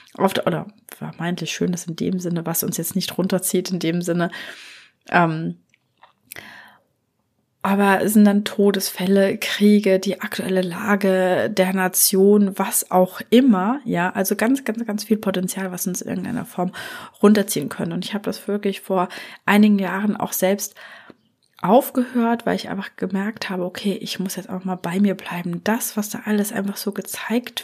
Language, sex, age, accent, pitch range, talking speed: German, female, 20-39, German, 185-220 Hz, 165 wpm